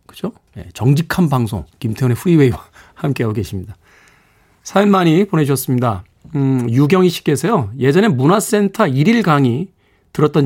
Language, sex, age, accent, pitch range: Korean, male, 40-59, native, 120-175 Hz